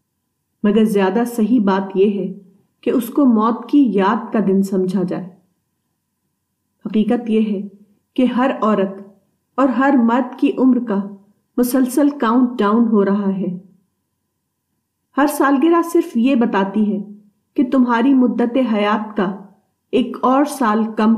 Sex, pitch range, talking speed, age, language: female, 190-240 Hz, 140 wpm, 40-59, Urdu